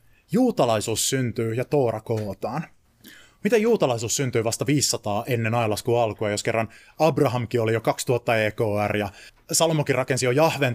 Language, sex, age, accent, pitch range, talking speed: Finnish, male, 30-49, native, 110-140 Hz, 140 wpm